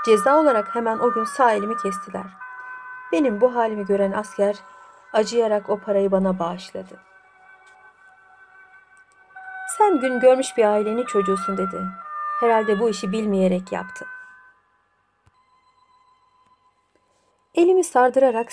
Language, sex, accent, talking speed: Turkish, female, native, 105 wpm